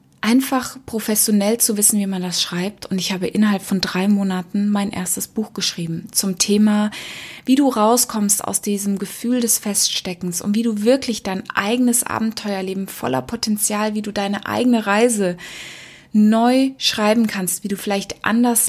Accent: German